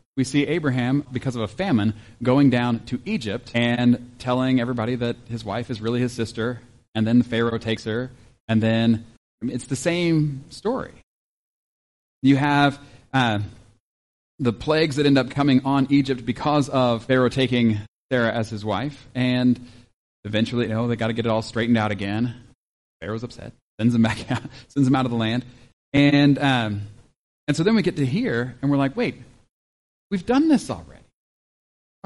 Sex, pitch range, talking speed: male, 115-145 Hz, 180 wpm